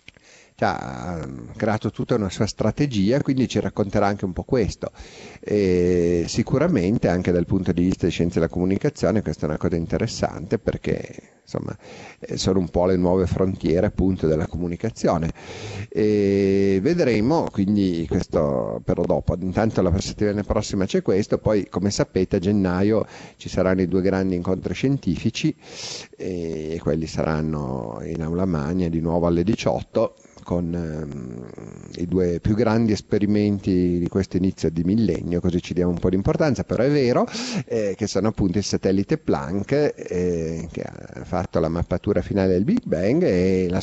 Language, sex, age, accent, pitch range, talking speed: Italian, male, 40-59, native, 85-105 Hz, 155 wpm